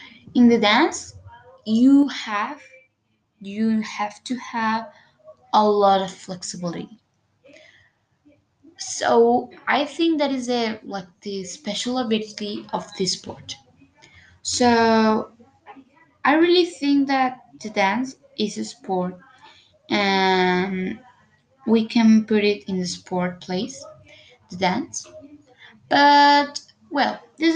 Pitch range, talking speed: 195-250 Hz, 110 wpm